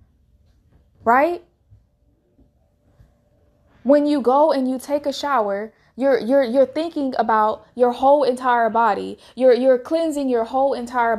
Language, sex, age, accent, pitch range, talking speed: English, female, 20-39, American, 210-270 Hz, 130 wpm